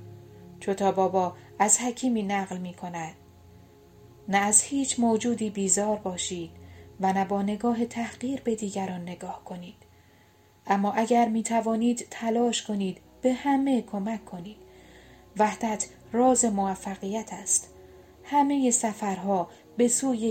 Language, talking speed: Persian, 120 wpm